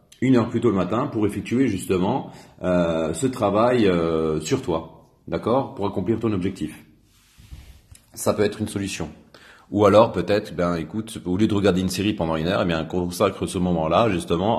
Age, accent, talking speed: 40-59, French, 185 wpm